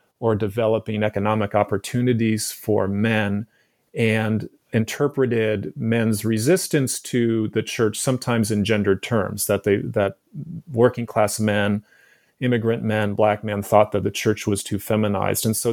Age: 30-49